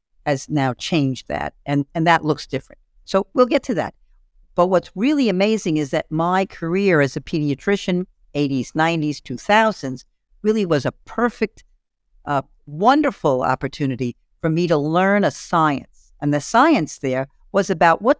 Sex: female